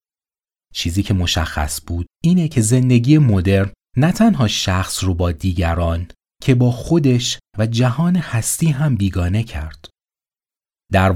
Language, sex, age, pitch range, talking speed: Persian, male, 30-49, 85-125 Hz, 130 wpm